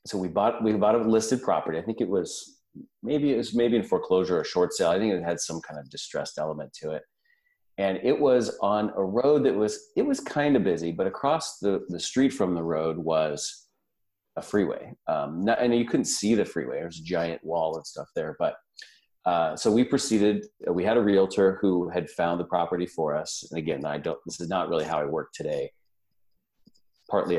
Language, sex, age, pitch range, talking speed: English, male, 40-59, 85-120 Hz, 220 wpm